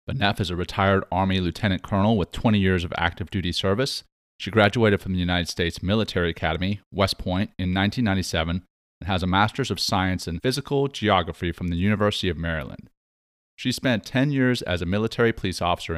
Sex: male